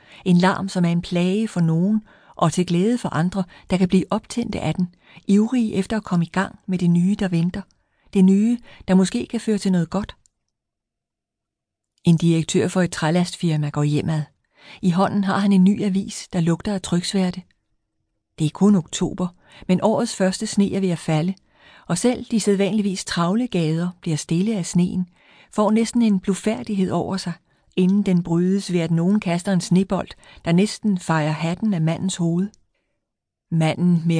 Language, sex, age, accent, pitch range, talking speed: Danish, female, 40-59, native, 165-200 Hz, 180 wpm